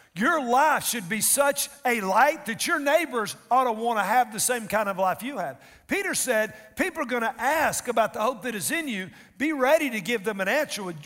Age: 50-69